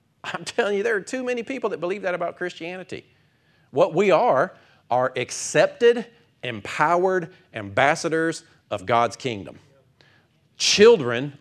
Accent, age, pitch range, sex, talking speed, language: American, 40-59, 125-175 Hz, male, 125 wpm, English